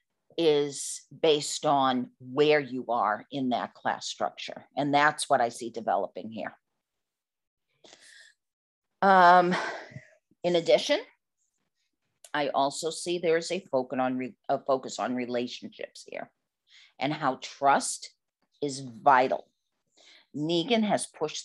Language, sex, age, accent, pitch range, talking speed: English, female, 50-69, American, 135-175 Hz, 115 wpm